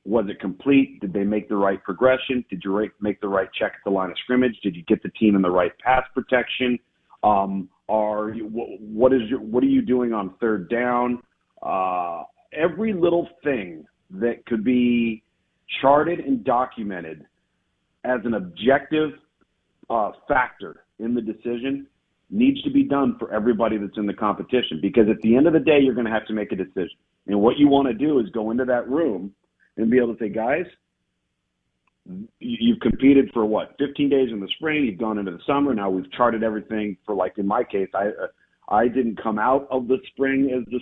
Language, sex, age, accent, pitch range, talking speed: English, male, 40-59, American, 105-135 Hz, 205 wpm